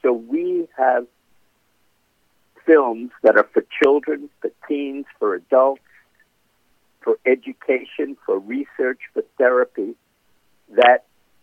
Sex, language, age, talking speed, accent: male, English, 60-79, 100 wpm, American